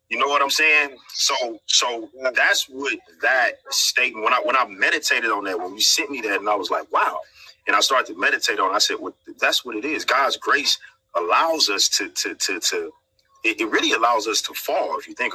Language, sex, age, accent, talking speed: English, male, 30-49, American, 240 wpm